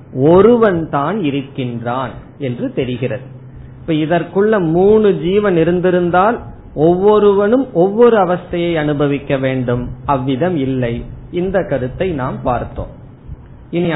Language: Tamil